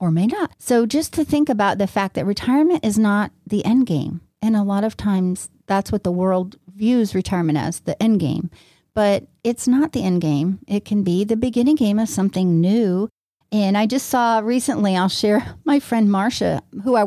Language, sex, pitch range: English, female, 180-225 Hz